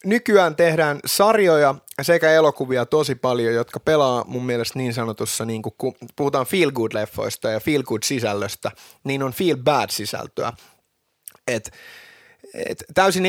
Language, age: Finnish, 30-49